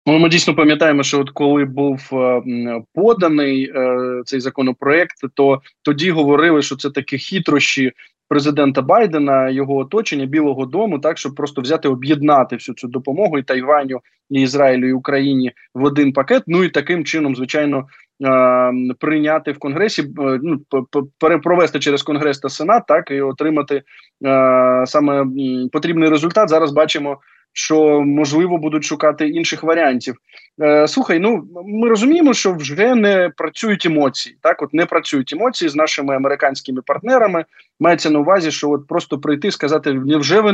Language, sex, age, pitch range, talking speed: Ukrainian, male, 20-39, 135-165 Hz, 145 wpm